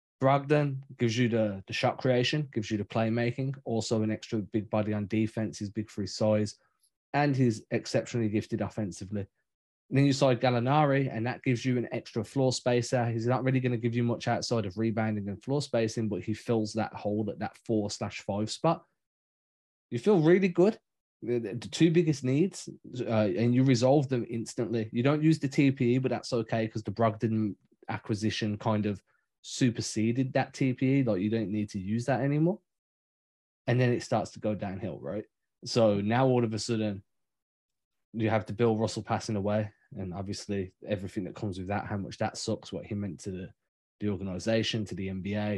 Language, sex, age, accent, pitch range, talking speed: English, male, 20-39, British, 105-125 Hz, 195 wpm